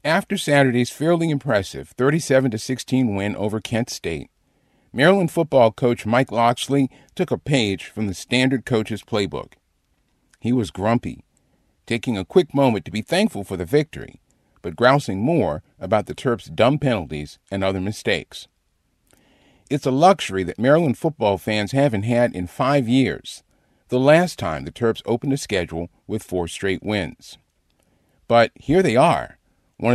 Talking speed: 150 wpm